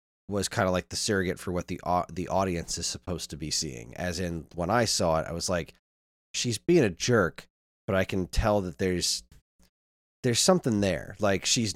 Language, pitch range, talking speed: English, 85-125 Hz, 210 wpm